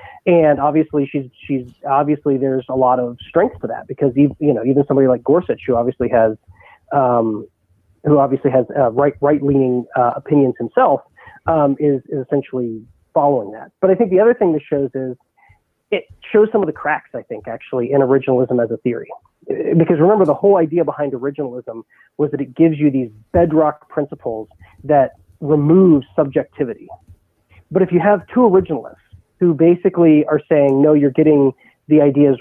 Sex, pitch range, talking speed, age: male, 130-155 Hz, 175 wpm, 30-49